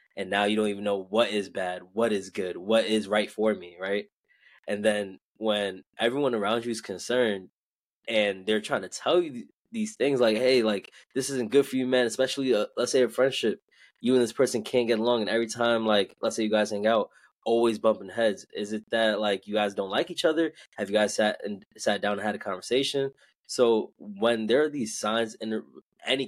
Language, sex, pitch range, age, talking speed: English, male, 105-120 Hz, 20-39, 225 wpm